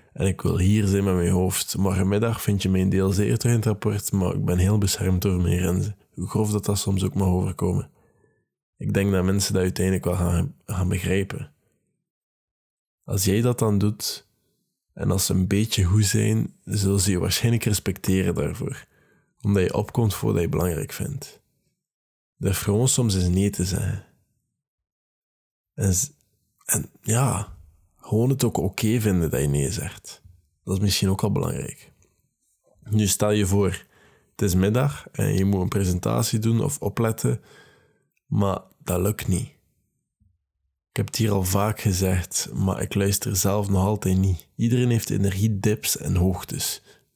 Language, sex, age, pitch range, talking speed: Dutch, male, 20-39, 95-110 Hz, 170 wpm